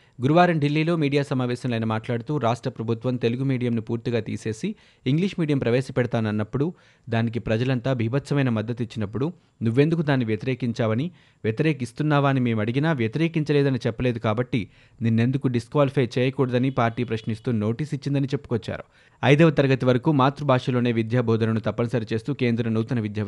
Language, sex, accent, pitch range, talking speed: Telugu, male, native, 115-140 Hz, 120 wpm